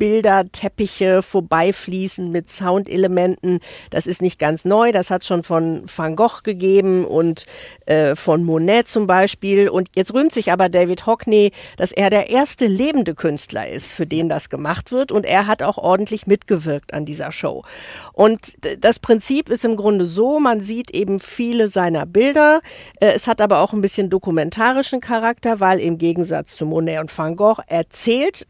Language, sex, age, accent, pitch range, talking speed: German, female, 50-69, German, 170-215 Hz, 175 wpm